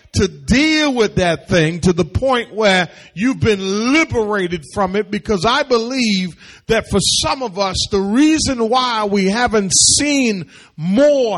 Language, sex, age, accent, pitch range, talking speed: English, male, 40-59, American, 195-265 Hz, 155 wpm